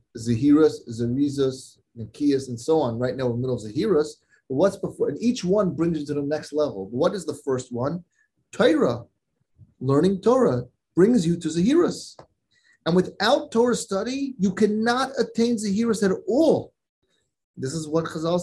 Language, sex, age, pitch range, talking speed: English, male, 30-49, 125-180 Hz, 175 wpm